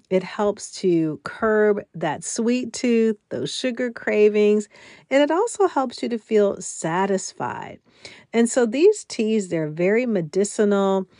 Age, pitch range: 50-69, 175-225 Hz